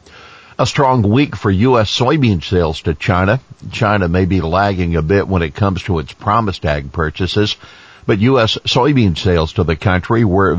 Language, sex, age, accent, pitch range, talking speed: English, male, 60-79, American, 85-110 Hz, 175 wpm